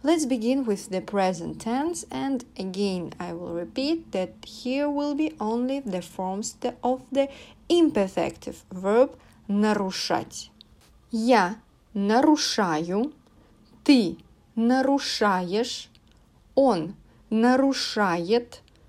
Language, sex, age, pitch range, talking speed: English, female, 30-49, 195-270 Hz, 90 wpm